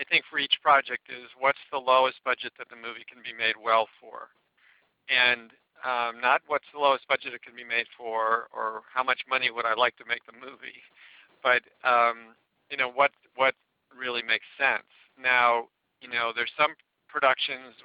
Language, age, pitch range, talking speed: English, 50-69, 115-130 Hz, 190 wpm